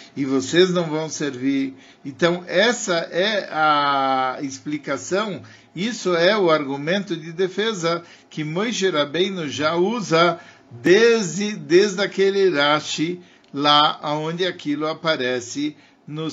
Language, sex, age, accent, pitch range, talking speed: Portuguese, male, 50-69, Brazilian, 145-190 Hz, 110 wpm